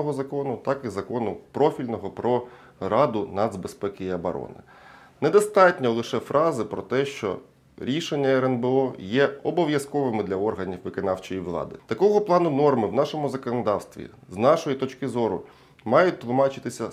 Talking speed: 130 wpm